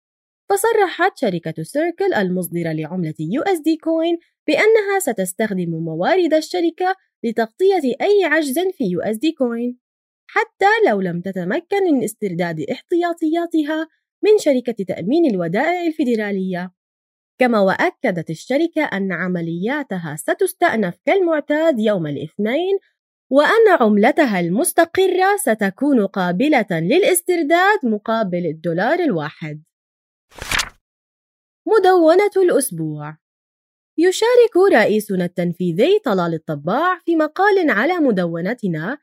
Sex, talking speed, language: female, 90 wpm, Arabic